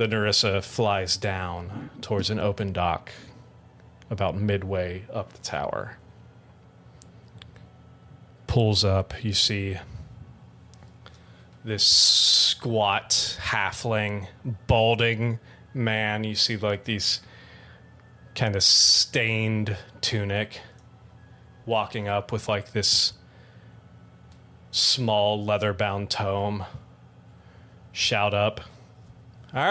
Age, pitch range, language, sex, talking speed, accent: 30-49, 95-115 Hz, English, male, 85 wpm, American